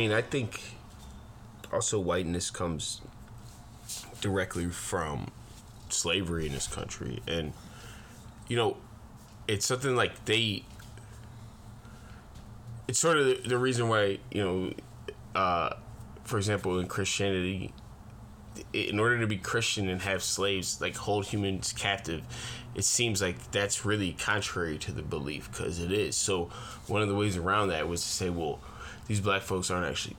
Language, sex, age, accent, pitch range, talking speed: English, male, 20-39, American, 95-115 Hz, 145 wpm